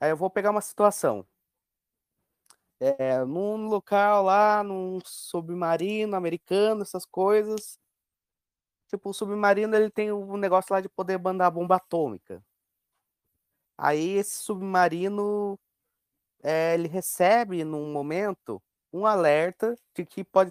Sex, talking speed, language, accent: male, 125 wpm, Portuguese, Brazilian